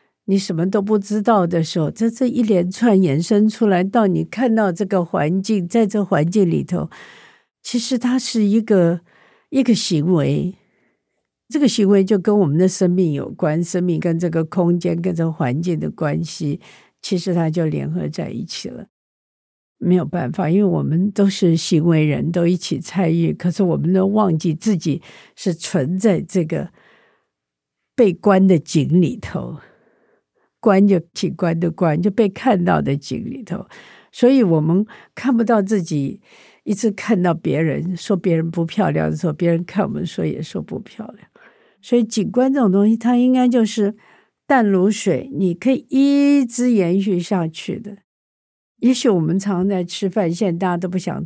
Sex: female